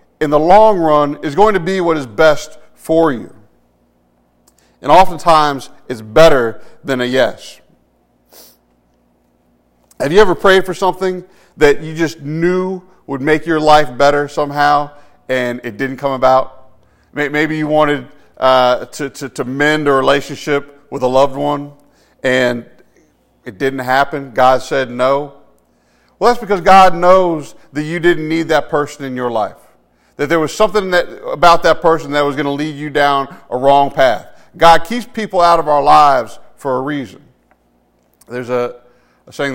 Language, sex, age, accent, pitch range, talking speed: English, male, 40-59, American, 120-155 Hz, 160 wpm